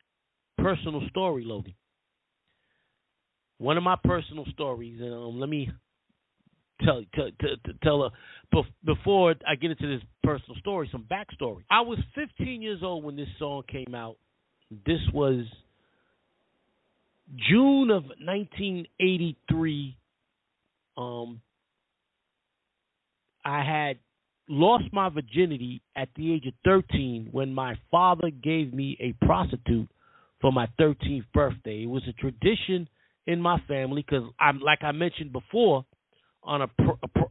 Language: English